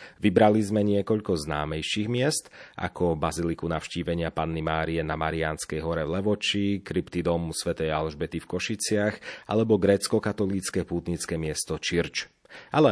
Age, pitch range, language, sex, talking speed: 30-49, 85-105 Hz, Slovak, male, 125 wpm